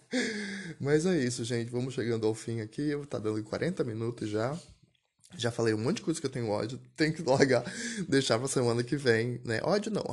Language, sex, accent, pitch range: Portuguese, male, Brazilian, 110-135 Hz